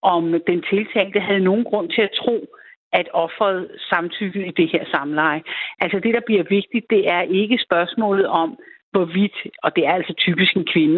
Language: Danish